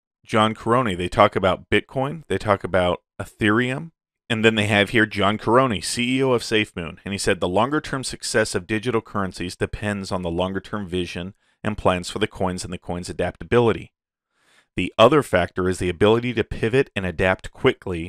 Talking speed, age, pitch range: 180 wpm, 40-59, 90-110 Hz